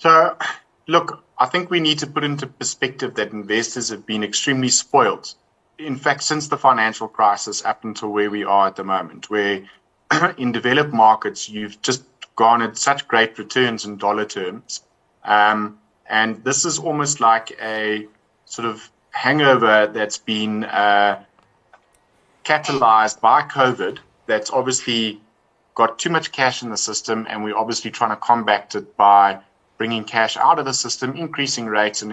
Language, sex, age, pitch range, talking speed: English, male, 20-39, 105-130 Hz, 160 wpm